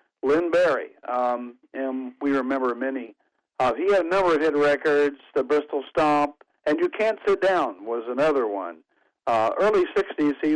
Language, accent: English, American